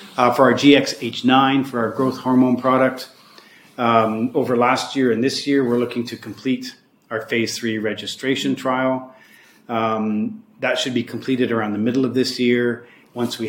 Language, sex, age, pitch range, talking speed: English, male, 40-59, 115-130 Hz, 170 wpm